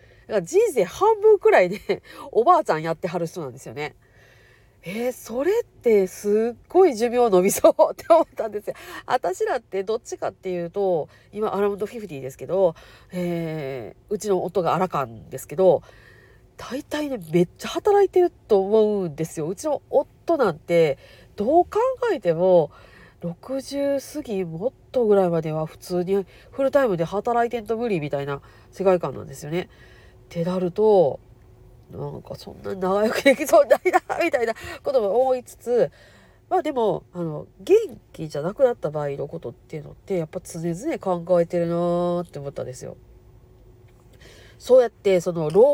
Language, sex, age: Japanese, female, 40-59